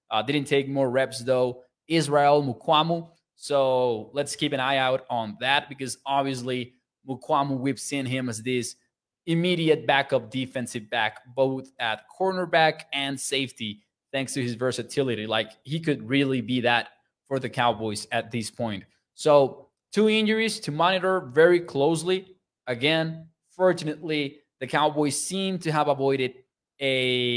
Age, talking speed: 20-39, 140 wpm